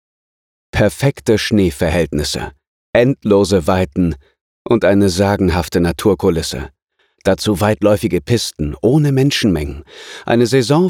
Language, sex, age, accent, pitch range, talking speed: German, male, 40-59, German, 90-125 Hz, 85 wpm